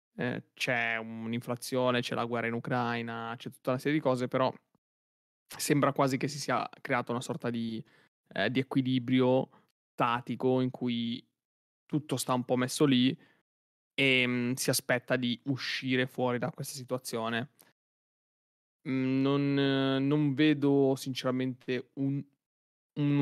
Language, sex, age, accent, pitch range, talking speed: Italian, male, 20-39, native, 120-135 Hz, 125 wpm